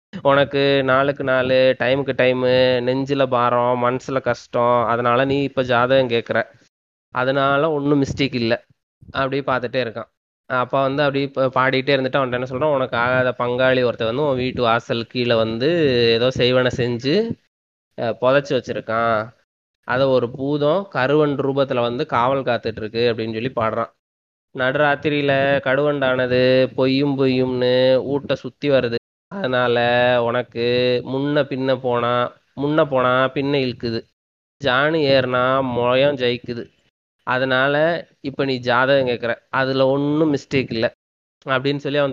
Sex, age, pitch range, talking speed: male, 20-39, 120-135 Hz, 120 wpm